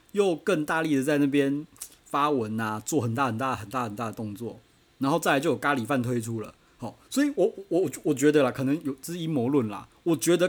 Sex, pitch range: male, 115-150 Hz